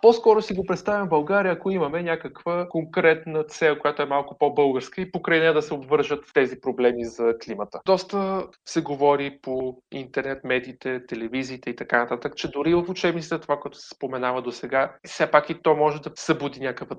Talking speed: 190 wpm